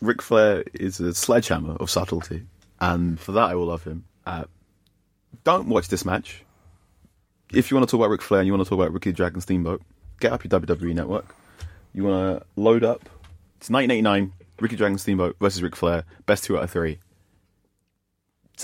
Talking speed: 195 wpm